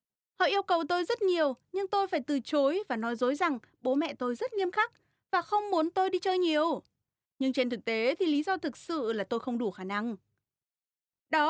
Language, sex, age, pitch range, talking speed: Vietnamese, female, 20-39, 245-335 Hz, 230 wpm